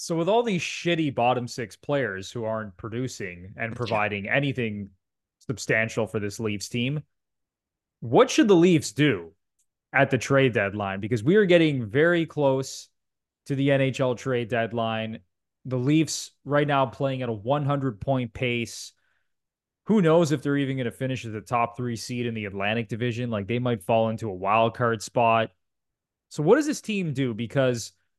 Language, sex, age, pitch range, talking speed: English, male, 20-39, 110-140 Hz, 170 wpm